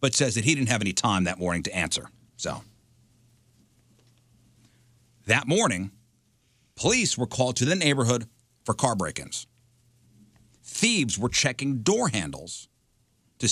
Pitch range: 110-130 Hz